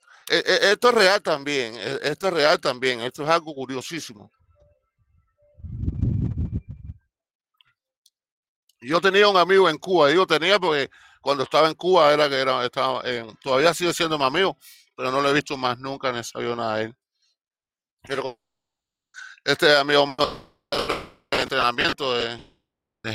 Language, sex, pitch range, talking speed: Spanish, male, 140-220 Hz, 135 wpm